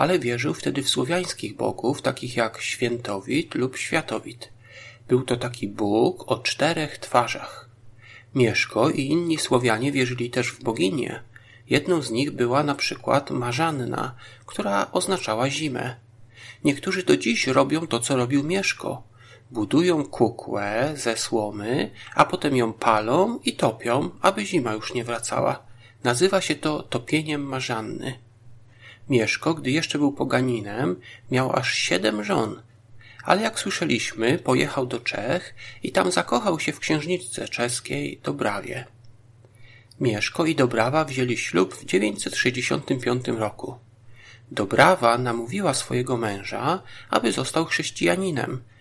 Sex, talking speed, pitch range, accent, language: male, 125 wpm, 115-140 Hz, native, Polish